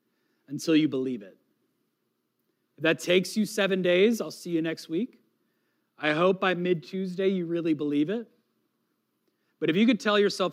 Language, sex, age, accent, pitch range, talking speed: English, male, 30-49, American, 150-195 Hz, 170 wpm